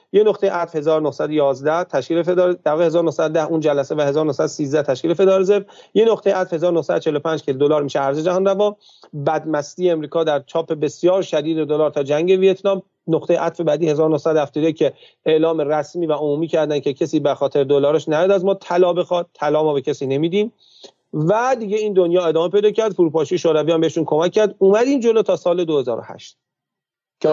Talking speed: 175 wpm